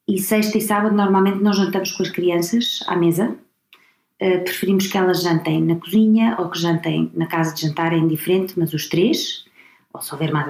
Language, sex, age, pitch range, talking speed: Portuguese, female, 20-39, 170-200 Hz, 195 wpm